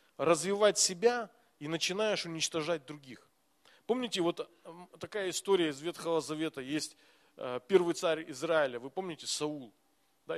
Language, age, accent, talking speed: Russian, 40-59, native, 120 wpm